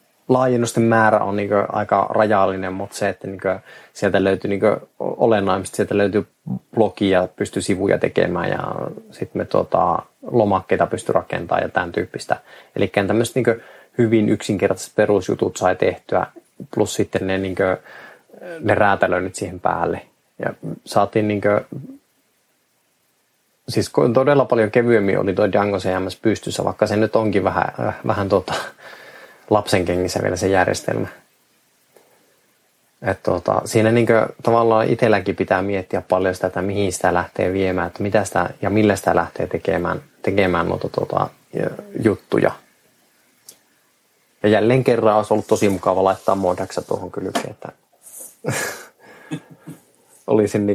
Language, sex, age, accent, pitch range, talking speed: Finnish, male, 20-39, native, 95-115 Hz, 130 wpm